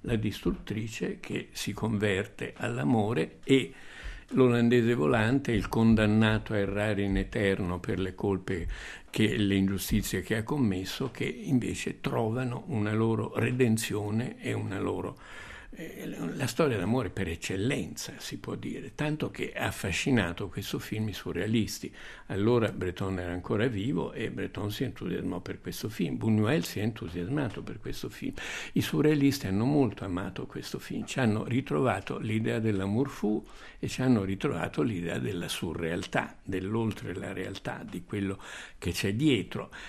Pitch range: 100-125 Hz